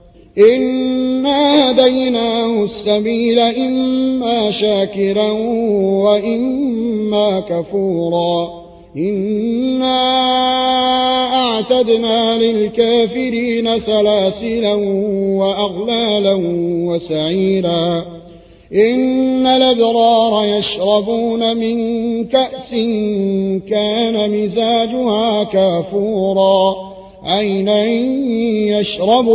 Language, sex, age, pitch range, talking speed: Arabic, male, 30-49, 195-245 Hz, 45 wpm